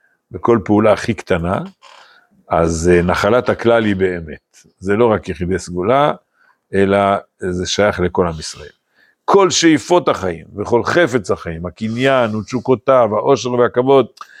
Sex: male